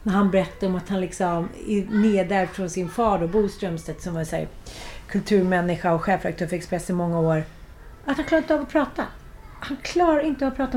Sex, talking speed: female, 210 wpm